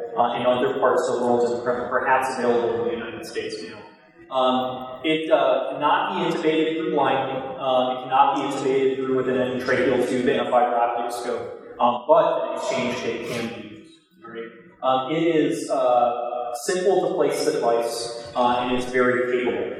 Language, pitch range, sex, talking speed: English, 120-155 Hz, male, 185 wpm